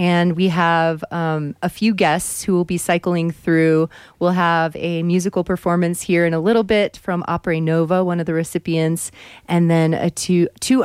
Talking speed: 190 wpm